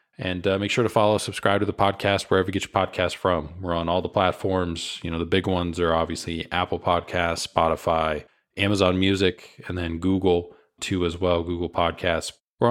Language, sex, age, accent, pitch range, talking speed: English, male, 20-39, American, 90-100 Hz, 200 wpm